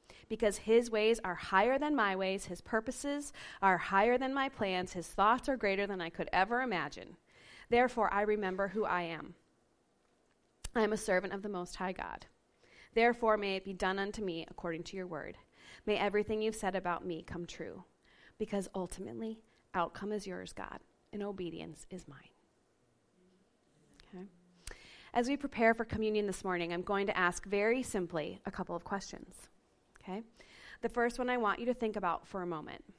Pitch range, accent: 185-230 Hz, American